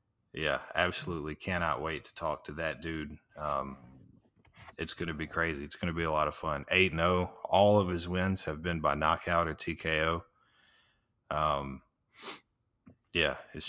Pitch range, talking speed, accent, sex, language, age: 75-95 Hz, 160 wpm, American, male, English, 30-49